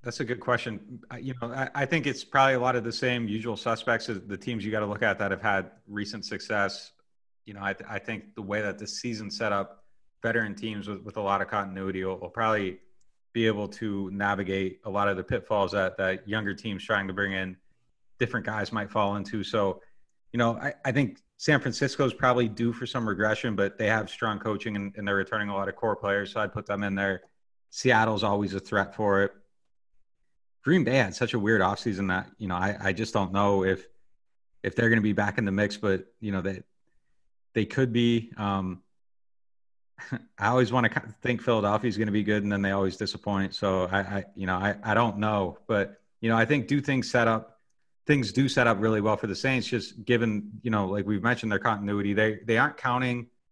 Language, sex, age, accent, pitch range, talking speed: English, male, 30-49, American, 100-115 Hz, 230 wpm